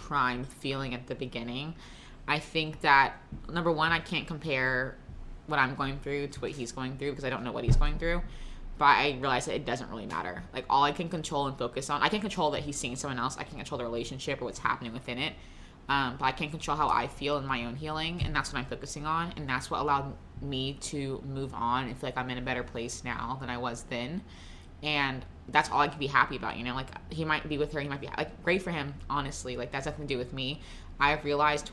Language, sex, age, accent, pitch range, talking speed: English, female, 20-39, American, 125-150 Hz, 260 wpm